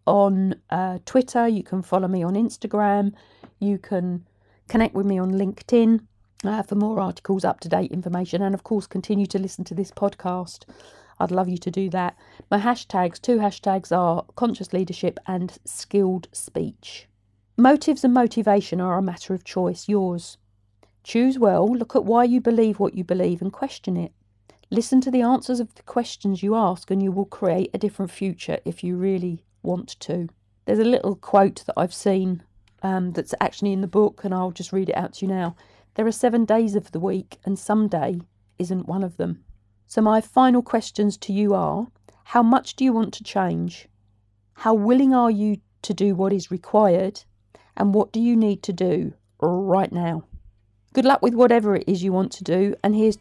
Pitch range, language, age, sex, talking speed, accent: 180-215 Hz, English, 50-69, female, 190 wpm, British